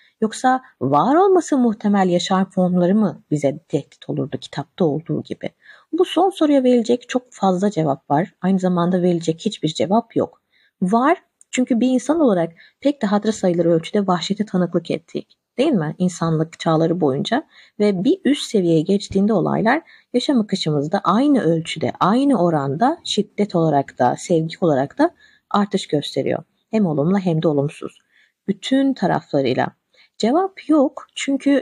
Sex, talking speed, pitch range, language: female, 140 wpm, 165-235 Hz, Turkish